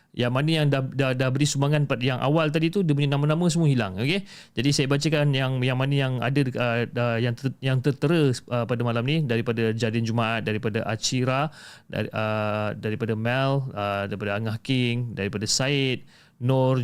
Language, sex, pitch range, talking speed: Malay, male, 115-145 Hz, 180 wpm